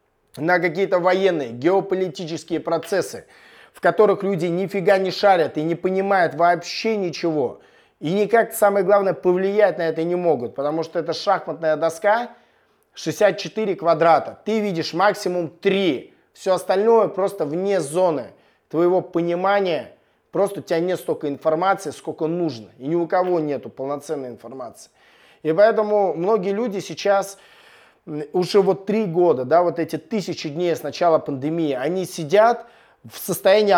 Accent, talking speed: native, 140 wpm